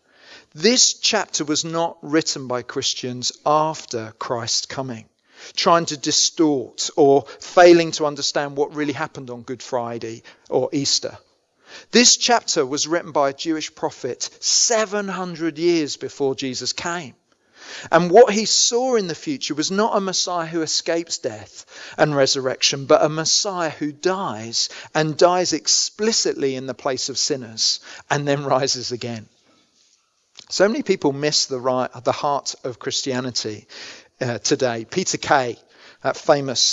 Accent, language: British, English